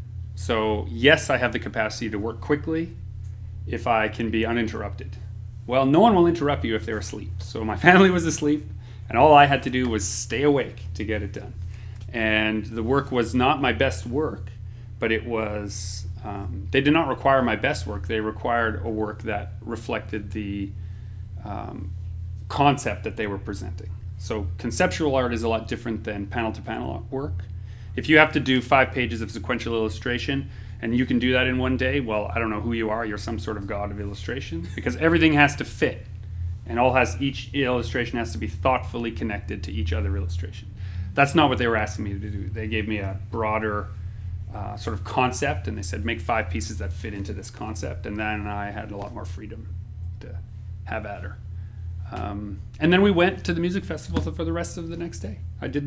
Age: 30-49